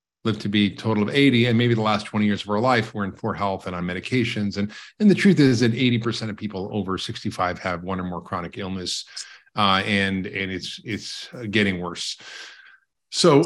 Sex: male